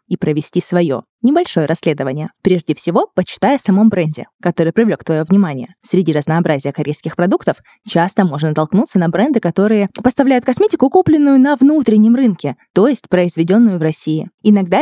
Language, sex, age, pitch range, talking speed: Russian, female, 20-39, 155-215 Hz, 145 wpm